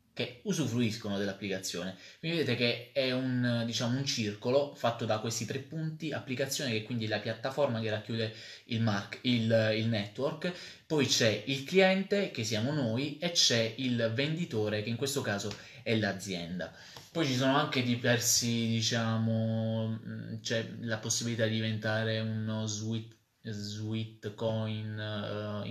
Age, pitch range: 20-39, 110-130 Hz